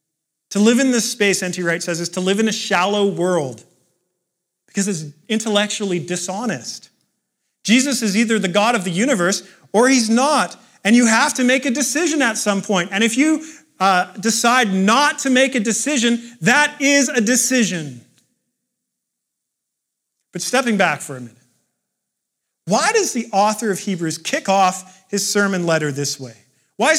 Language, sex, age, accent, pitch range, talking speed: English, male, 40-59, American, 180-235 Hz, 165 wpm